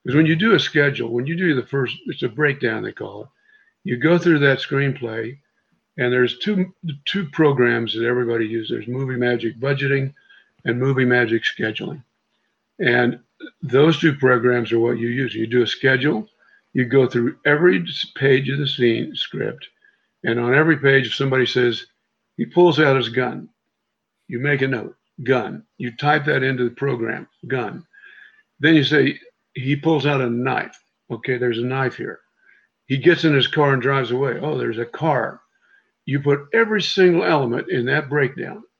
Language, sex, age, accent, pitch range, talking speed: English, male, 50-69, American, 125-150 Hz, 180 wpm